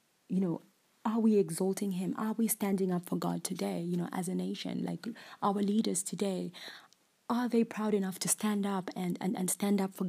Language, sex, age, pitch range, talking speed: English, female, 20-39, 175-210 Hz, 210 wpm